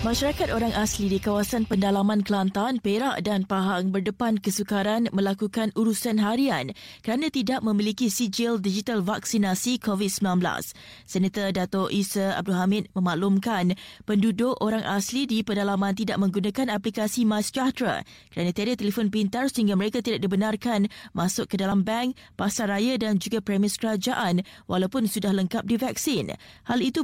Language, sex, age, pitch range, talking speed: Malay, female, 20-39, 195-230 Hz, 135 wpm